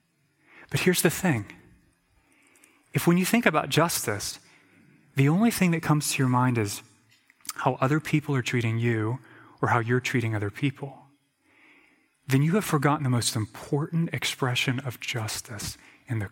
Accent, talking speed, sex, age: American, 160 wpm, male, 30-49